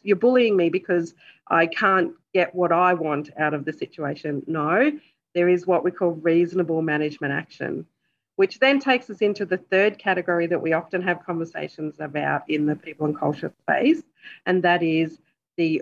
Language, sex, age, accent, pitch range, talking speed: English, female, 40-59, Australian, 165-215 Hz, 180 wpm